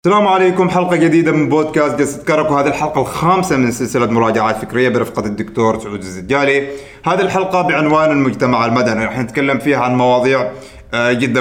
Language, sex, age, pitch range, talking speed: Arabic, male, 30-49, 125-150 Hz, 155 wpm